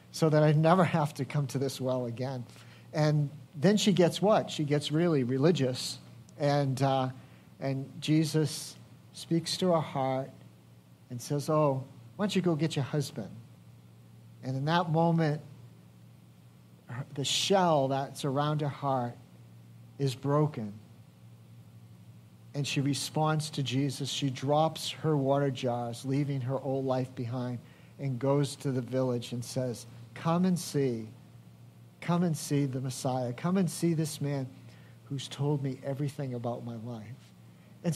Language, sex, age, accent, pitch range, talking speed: English, male, 50-69, American, 125-160 Hz, 145 wpm